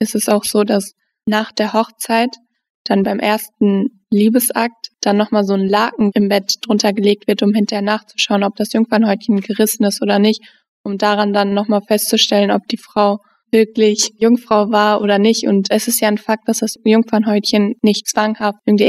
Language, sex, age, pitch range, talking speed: German, female, 20-39, 210-230 Hz, 180 wpm